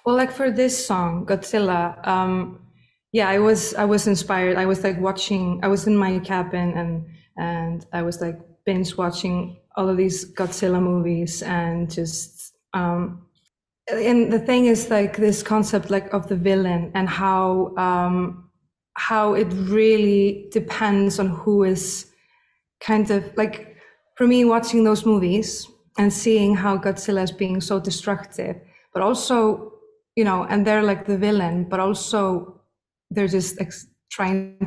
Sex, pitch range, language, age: female, 185-220 Hz, English, 20-39